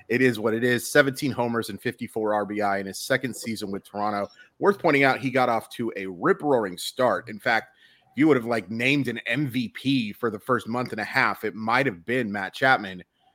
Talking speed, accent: 220 wpm, American